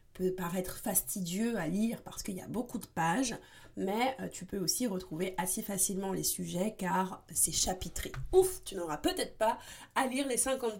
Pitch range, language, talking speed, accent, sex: 185-230 Hz, French, 185 wpm, French, female